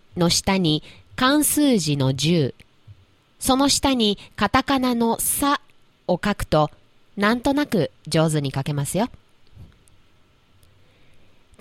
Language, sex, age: Chinese, female, 20-39